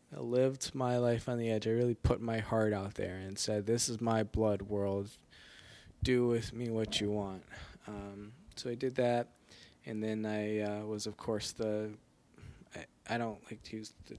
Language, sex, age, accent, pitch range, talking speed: English, male, 20-39, American, 100-115 Hz, 195 wpm